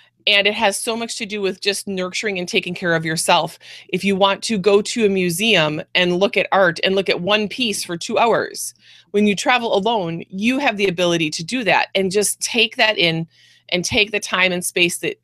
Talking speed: 230 wpm